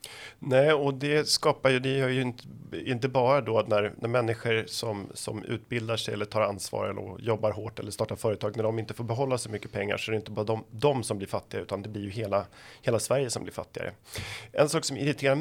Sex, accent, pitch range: male, native, 105-125 Hz